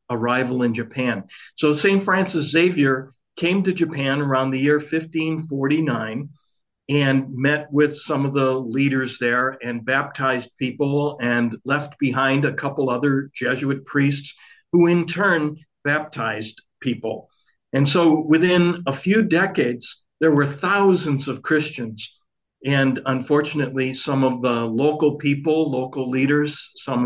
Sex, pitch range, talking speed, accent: male, 130-155 Hz, 130 wpm, American